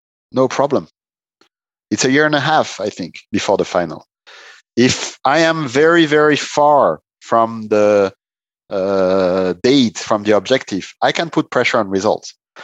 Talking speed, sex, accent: 150 wpm, male, French